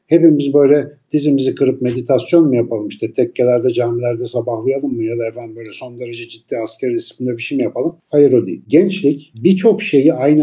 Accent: native